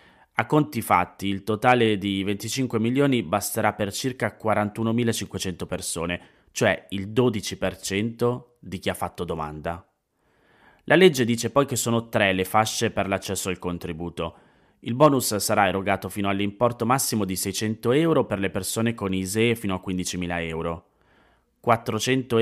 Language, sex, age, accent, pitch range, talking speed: Italian, male, 30-49, native, 90-115 Hz, 145 wpm